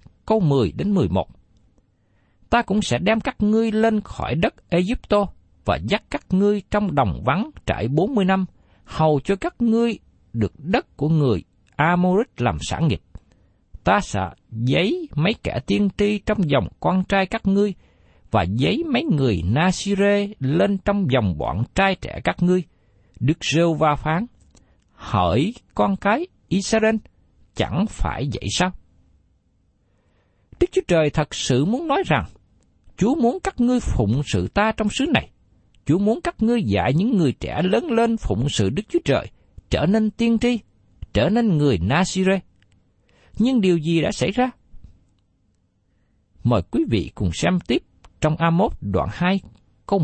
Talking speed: 155 wpm